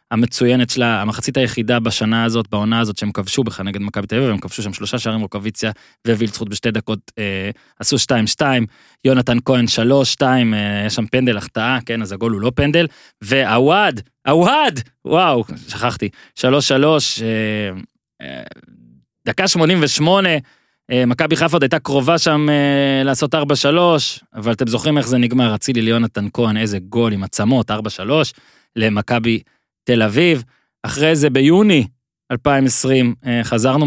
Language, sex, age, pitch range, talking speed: Hebrew, male, 20-39, 110-135 Hz, 115 wpm